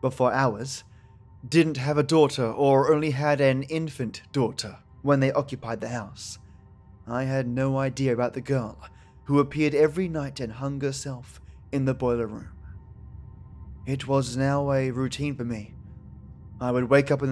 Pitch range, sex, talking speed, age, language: 110-150 Hz, male, 165 wpm, 20-39, English